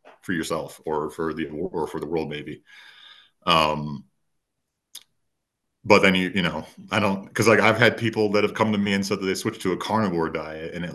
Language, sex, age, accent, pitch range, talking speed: English, male, 40-59, American, 80-110 Hz, 215 wpm